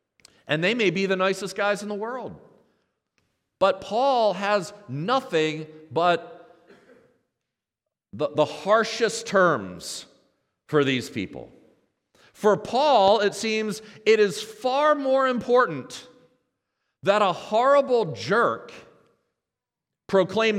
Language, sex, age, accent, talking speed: English, male, 40-59, American, 105 wpm